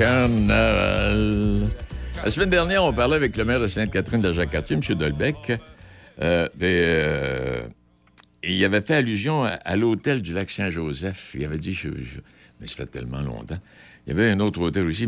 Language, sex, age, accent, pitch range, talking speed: French, male, 60-79, French, 75-110 Hz, 150 wpm